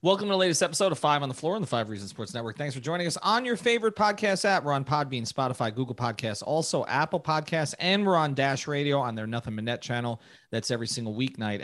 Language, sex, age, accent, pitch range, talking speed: English, male, 30-49, American, 120-165 Hz, 255 wpm